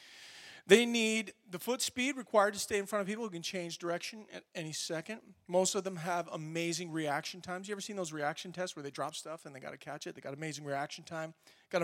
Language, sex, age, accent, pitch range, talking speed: English, male, 40-59, American, 155-195 Hz, 245 wpm